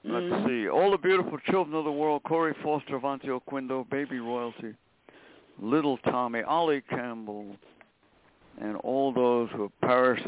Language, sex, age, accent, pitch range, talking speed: English, male, 60-79, American, 120-160 Hz, 145 wpm